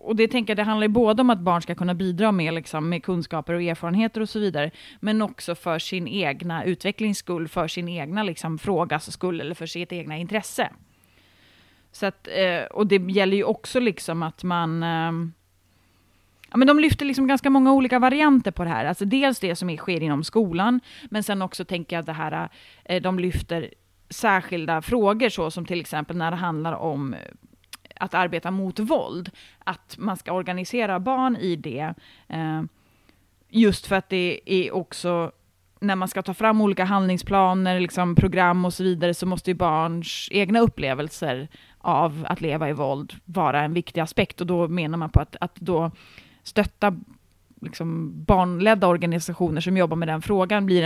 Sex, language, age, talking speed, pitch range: female, Swedish, 30-49, 180 wpm, 165-200 Hz